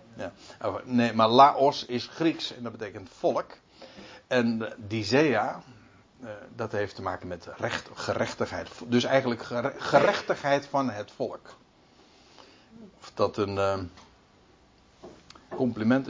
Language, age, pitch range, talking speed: Dutch, 60-79, 120-170 Hz, 100 wpm